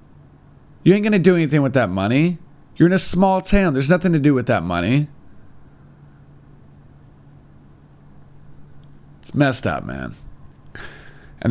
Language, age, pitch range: English, 40-59, 115-165 Hz